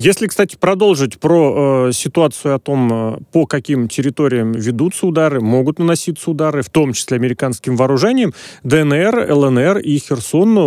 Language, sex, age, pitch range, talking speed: Russian, male, 30-49, 125-175 Hz, 140 wpm